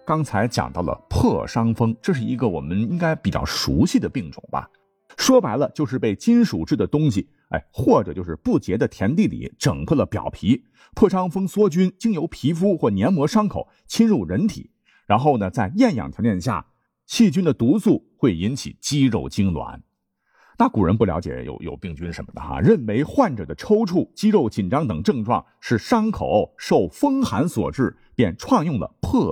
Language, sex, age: Chinese, male, 50-69